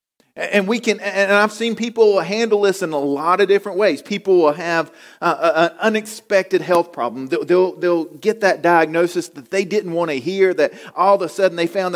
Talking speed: 200 wpm